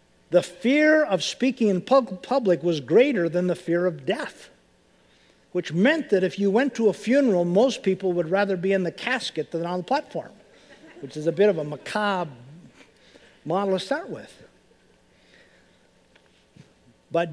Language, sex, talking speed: English, male, 160 wpm